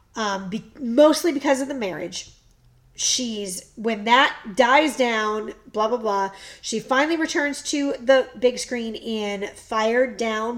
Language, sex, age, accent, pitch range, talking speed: English, female, 40-59, American, 215-280 Hz, 140 wpm